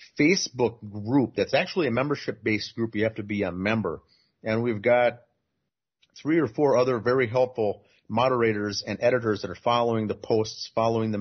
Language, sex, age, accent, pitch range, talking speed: English, male, 30-49, American, 105-125 Hz, 175 wpm